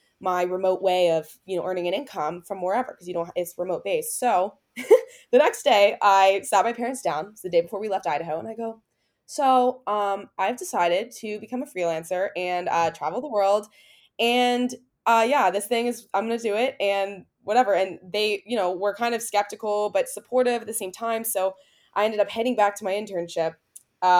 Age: 20-39